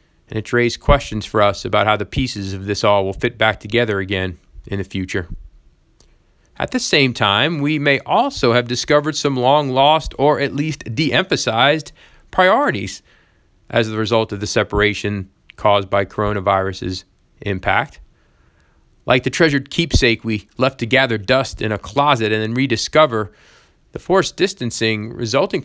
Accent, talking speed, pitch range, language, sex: American, 155 wpm, 105-140 Hz, English, male